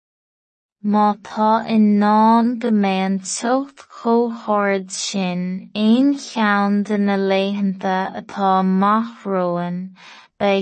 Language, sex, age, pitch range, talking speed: English, female, 20-39, 195-225 Hz, 80 wpm